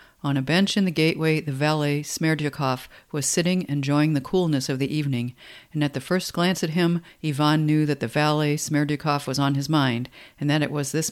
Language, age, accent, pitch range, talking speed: English, 50-69, American, 140-170 Hz, 210 wpm